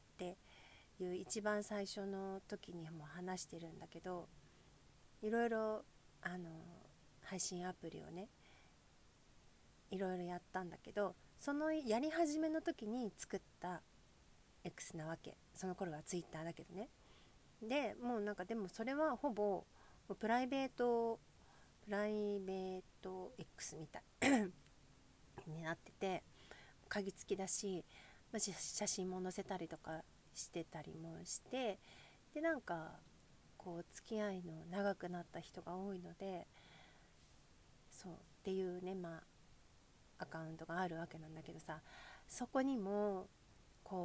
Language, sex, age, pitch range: Japanese, female, 40-59, 165-210 Hz